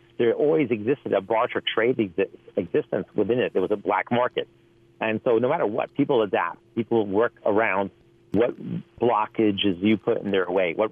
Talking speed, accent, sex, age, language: 180 wpm, American, male, 50-69, English